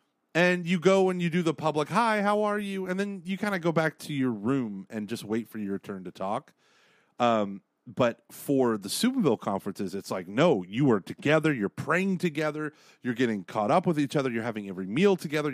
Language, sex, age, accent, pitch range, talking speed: English, male, 30-49, American, 105-150 Hz, 220 wpm